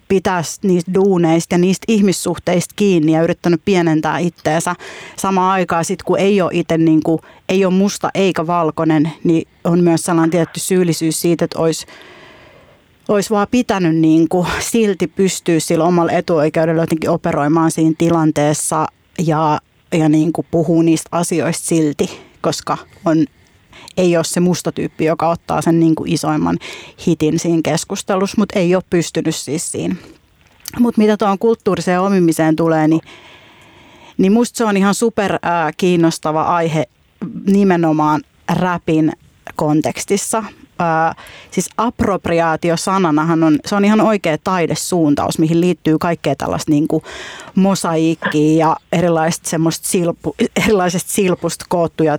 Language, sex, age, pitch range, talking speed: Finnish, female, 30-49, 160-190 Hz, 130 wpm